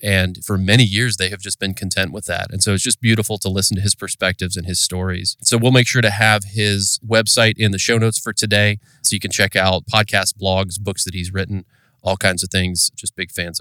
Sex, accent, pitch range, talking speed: male, American, 95-115 Hz, 245 wpm